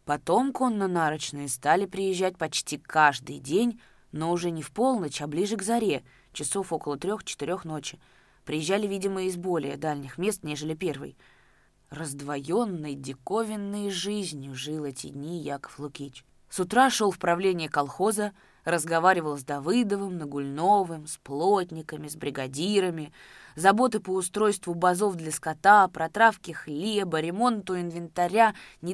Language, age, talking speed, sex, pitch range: Russian, 20-39, 130 wpm, female, 150-200 Hz